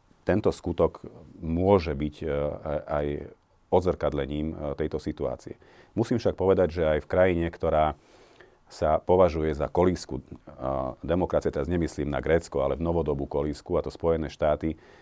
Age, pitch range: 40-59, 75-85 Hz